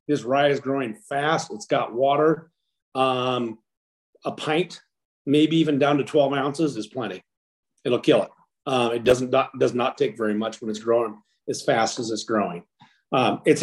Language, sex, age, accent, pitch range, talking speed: English, male, 40-59, American, 115-145 Hz, 180 wpm